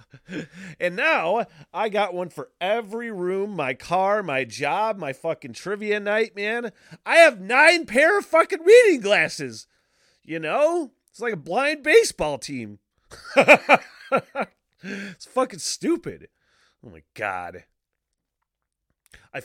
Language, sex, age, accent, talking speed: English, male, 30-49, American, 125 wpm